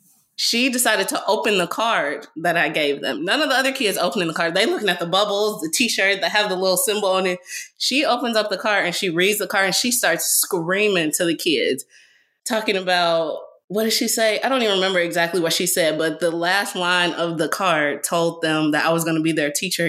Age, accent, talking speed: 20-39, American, 240 wpm